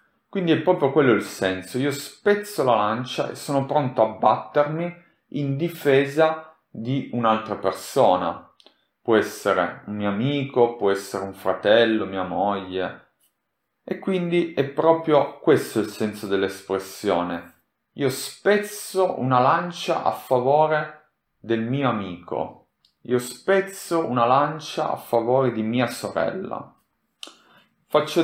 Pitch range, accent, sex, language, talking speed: 105-145 Hz, native, male, Italian, 125 wpm